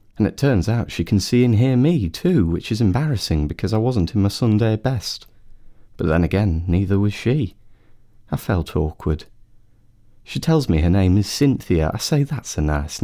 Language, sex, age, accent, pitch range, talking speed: English, male, 30-49, British, 90-110 Hz, 195 wpm